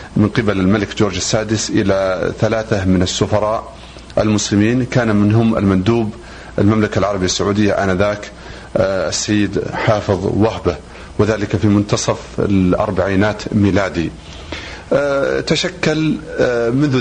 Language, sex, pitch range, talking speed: Arabic, male, 95-110 Hz, 95 wpm